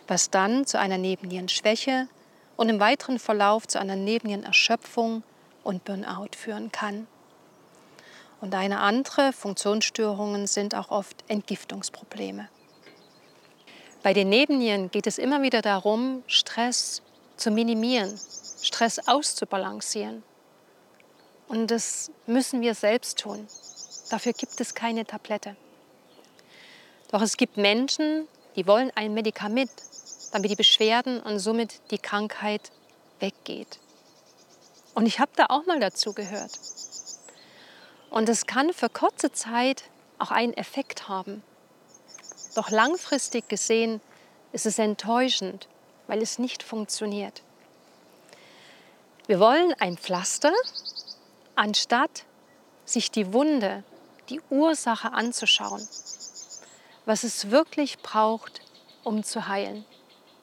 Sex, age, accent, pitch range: female, 40-59, German, 205-250 Hz